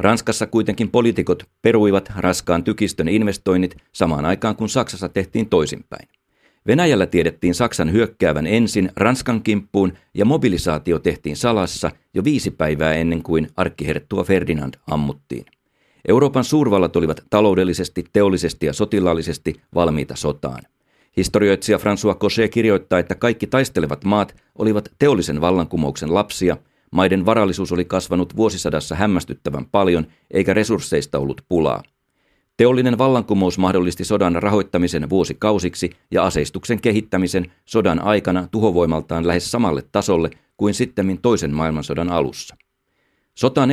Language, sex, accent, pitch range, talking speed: Finnish, male, native, 85-105 Hz, 115 wpm